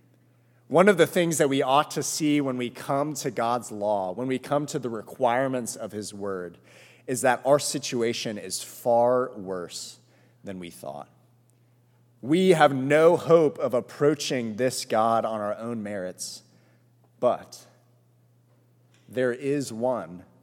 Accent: American